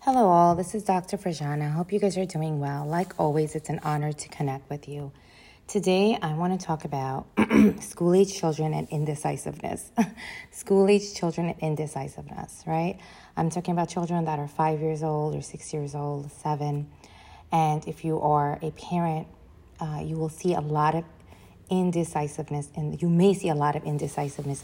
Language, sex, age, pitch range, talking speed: English, female, 30-49, 145-180 Hz, 180 wpm